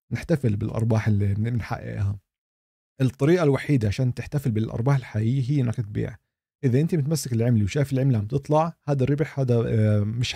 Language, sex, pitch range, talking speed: Arabic, male, 110-135 Hz, 145 wpm